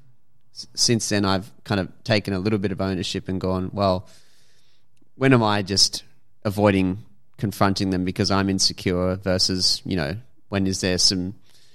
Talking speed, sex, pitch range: 160 wpm, male, 95-115 Hz